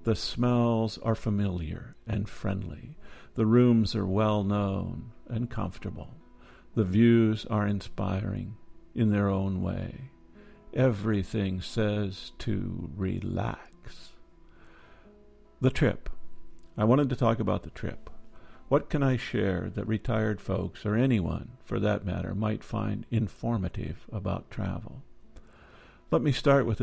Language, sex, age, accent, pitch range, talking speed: English, male, 50-69, American, 95-115 Hz, 125 wpm